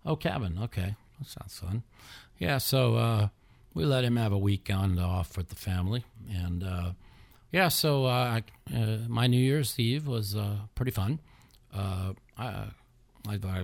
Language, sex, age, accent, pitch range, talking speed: English, male, 40-59, American, 90-110 Hz, 150 wpm